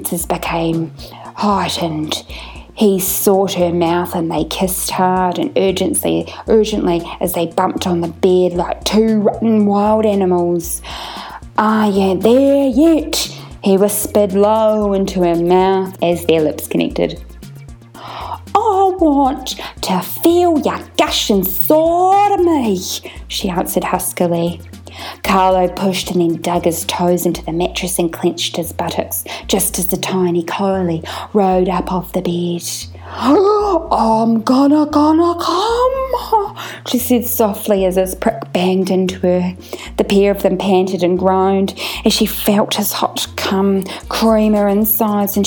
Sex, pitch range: female, 175-220 Hz